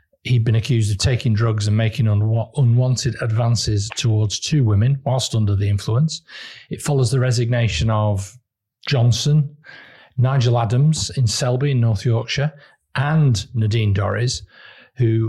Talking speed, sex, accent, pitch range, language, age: 135 wpm, male, British, 115-135 Hz, English, 40-59